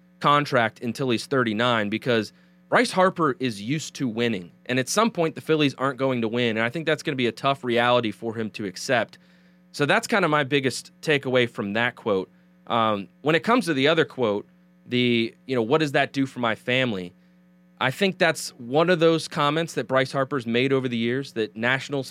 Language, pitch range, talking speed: English, 120-155 Hz, 215 wpm